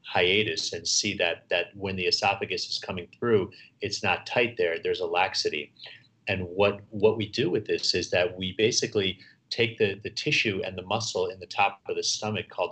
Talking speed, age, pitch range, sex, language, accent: 205 wpm, 30-49, 95-150 Hz, male, English, American